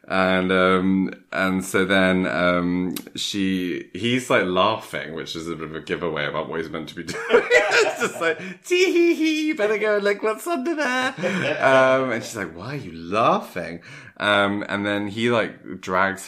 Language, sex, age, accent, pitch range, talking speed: English, male, 20-39, British, 90-125 Hz, 190 wpm